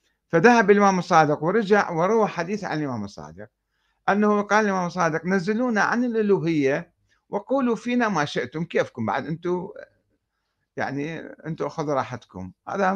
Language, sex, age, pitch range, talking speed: Arabic, male, 60-79, 110-175 Hz, 130 wpm